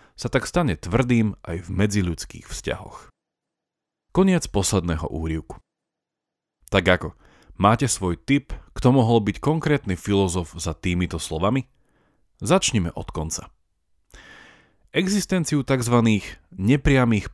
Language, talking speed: Slovak, 105 wpm